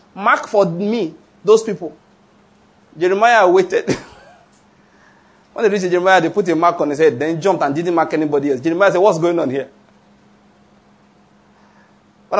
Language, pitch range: English, 155-200 Hz